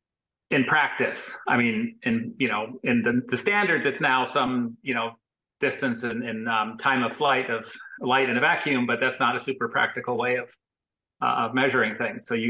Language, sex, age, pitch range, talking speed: English, male, 40-59, 125-160 Hz, 205 wpm